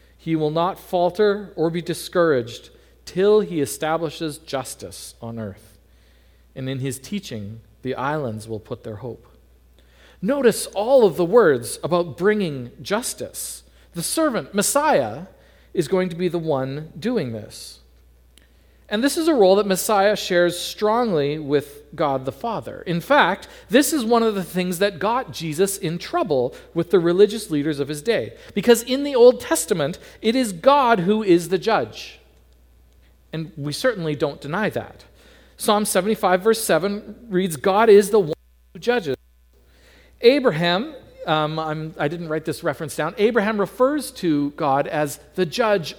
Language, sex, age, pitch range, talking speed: English, male, 40-59, 135-210 Hz, 155 wpm